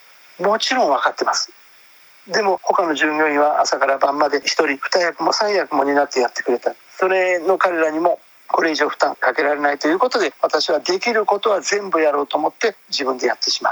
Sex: male